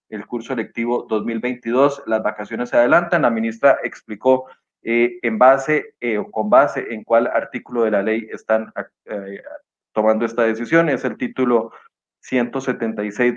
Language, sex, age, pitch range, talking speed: Spanish, male, 30-49, 110-125 Hz, 150 wpm